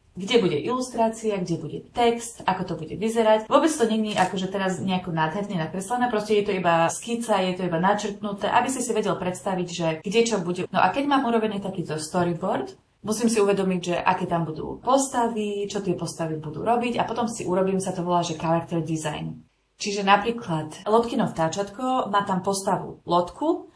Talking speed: 190 wpm